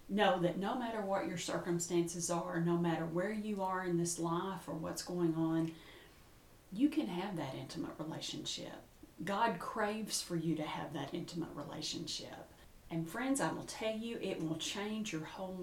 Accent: American